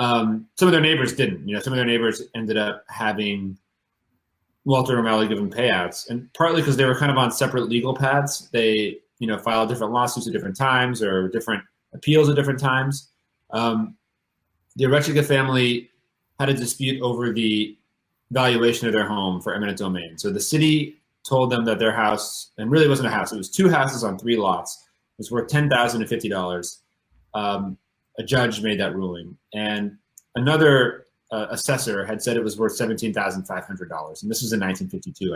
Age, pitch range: 30-49, 105-130 Hz